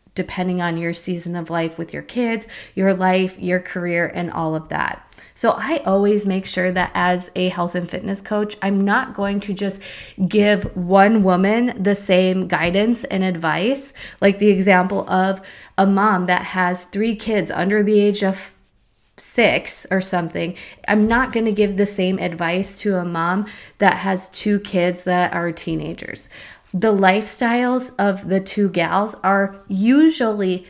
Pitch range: 180-210 Hz